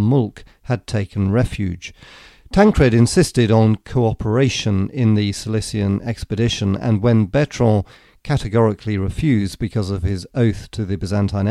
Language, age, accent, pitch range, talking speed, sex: English, 40-59, British, 100-120 Hz, 125 wpm, male